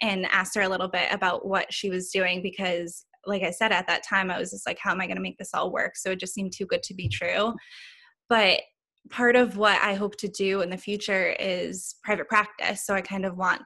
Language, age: English, 10-29